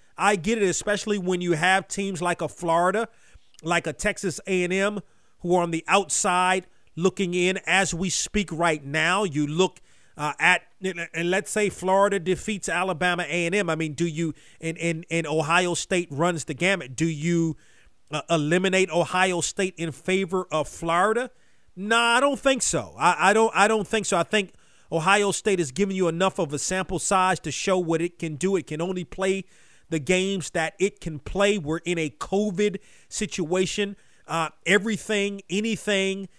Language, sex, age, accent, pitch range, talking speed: English, male, 40-59, American, 170-205 Hz, 180 wpm